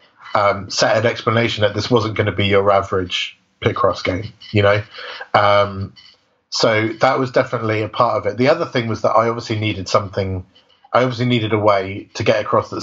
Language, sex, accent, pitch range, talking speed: English, male, British, 100-120 Hz, 200 wpm